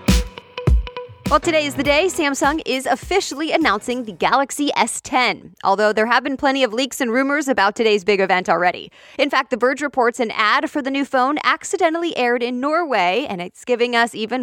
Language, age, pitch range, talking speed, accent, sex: English, 20-39, 220-290 Hz, 190 wpm, American, female